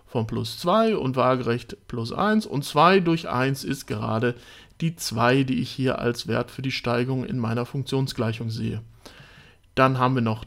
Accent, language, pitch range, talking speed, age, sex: German, German, 120-160 Hz, 180 wpm, 60-79, male